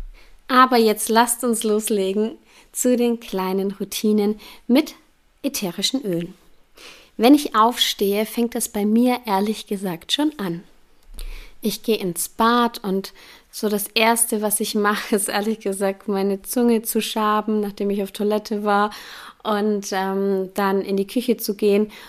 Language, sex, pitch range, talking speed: German, female, 200-235 Hz, 145 wpm